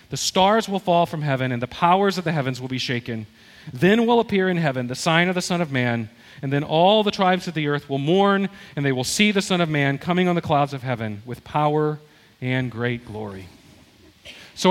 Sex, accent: male, American